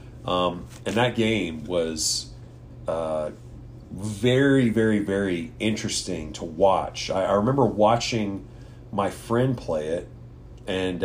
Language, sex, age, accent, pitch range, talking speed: English, male, 40-59, American, 105-125 Hz, 115 wpm